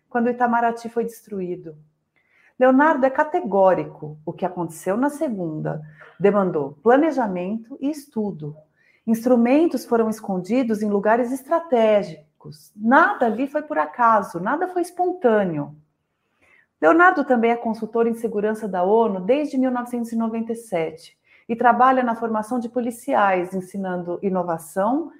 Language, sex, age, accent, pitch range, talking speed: Portuguese, female, 40-59, Brazilian, 185-255 Hz, 115 wpm